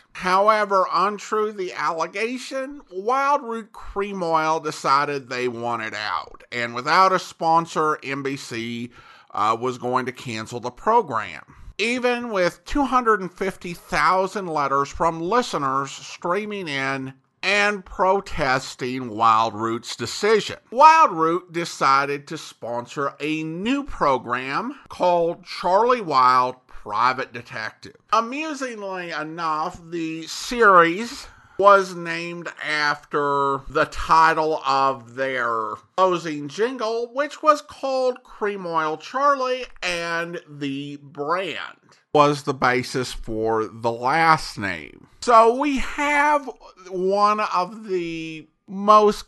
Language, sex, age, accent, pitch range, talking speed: English, male, 50-69, American, 140-210 Hz, 105 wpm